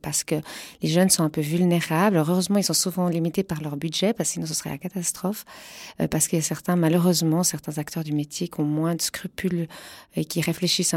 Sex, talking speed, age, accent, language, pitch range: female, 220 wpm, 40-59, French, French, 160-195 Hz